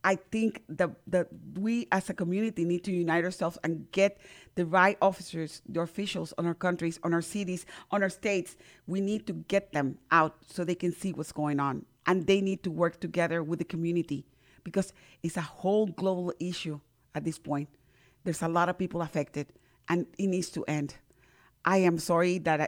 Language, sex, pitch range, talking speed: English, female, 160-190 Hz, 195 wpm